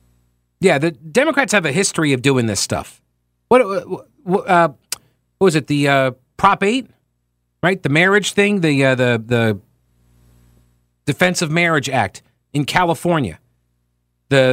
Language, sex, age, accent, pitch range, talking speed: English, male, 40-59, American, 100-165 Hz, 140 wpm